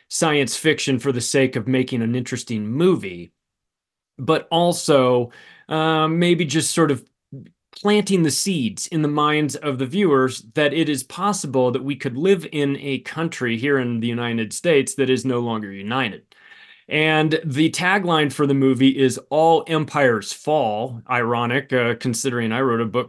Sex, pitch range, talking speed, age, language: male, 130-165 Hz, 165 wpm, 30-49, English